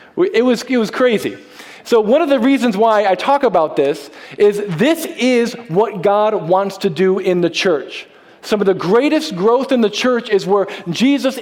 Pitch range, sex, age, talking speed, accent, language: 200-265 Hz, male, 40-59, 190 wpm, American, English